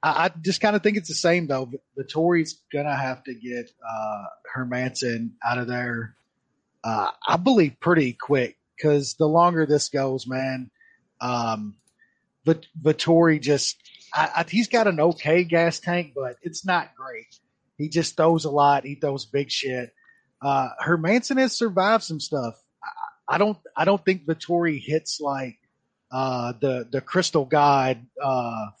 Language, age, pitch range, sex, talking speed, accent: English, 30-49, 130-165 Hz, male, 155 wpm, American